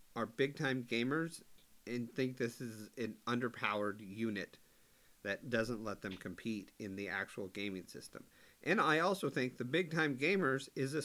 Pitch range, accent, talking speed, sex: 120-145 Hz, American, 170 wpm, male